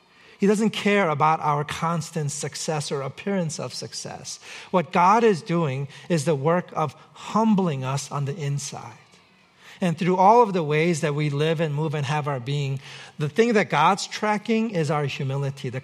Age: 40-59